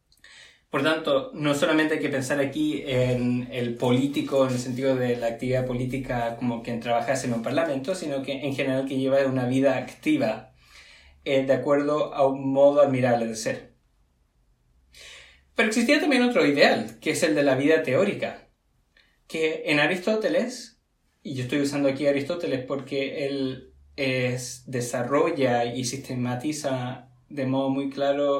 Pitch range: 125-165 Hz